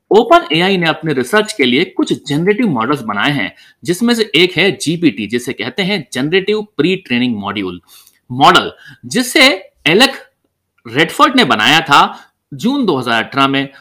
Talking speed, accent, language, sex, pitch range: 115 wpm, native, Hindi, male, 145-235 Hz